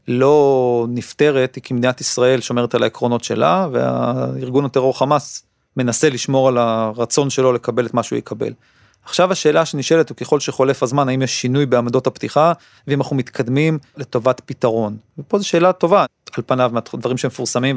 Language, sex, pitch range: Hebrew, male, 120-145 Hz